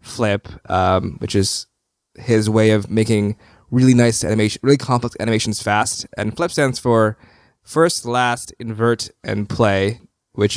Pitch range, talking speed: 105-125 Hz, 140 wpm